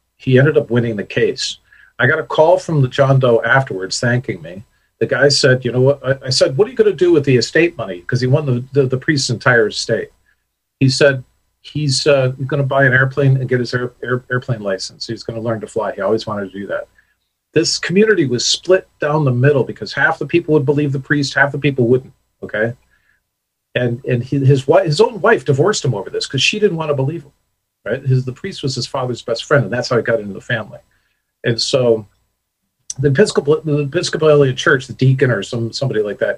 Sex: male